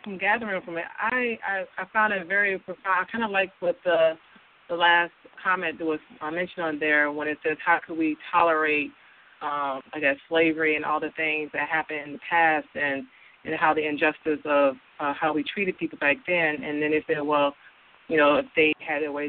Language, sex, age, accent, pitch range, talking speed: English, female, 30-49, American, 145-170 Hz, 225 wpm